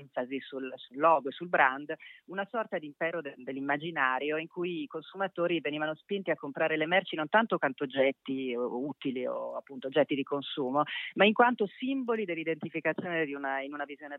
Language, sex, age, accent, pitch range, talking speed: Italian, female, 30-49, native, 135-170 Hz, 185 wpm